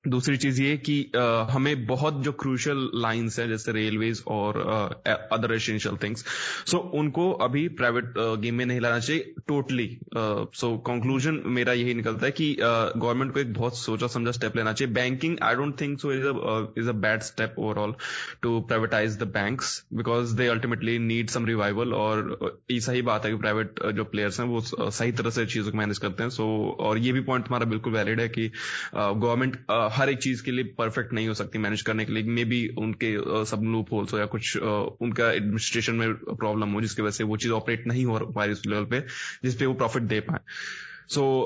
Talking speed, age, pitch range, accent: 215 wpm, 20-39, 110-125 Hz, native